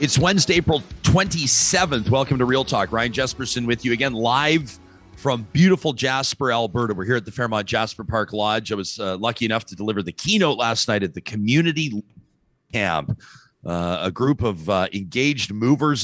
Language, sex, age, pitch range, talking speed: English, male, 40-59, 105-135 Hz, 180 wpm